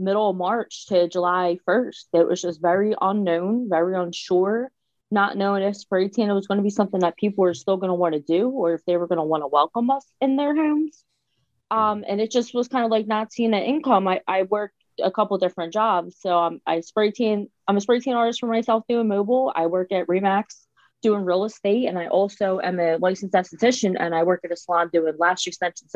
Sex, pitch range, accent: female, 175-215 Hz, American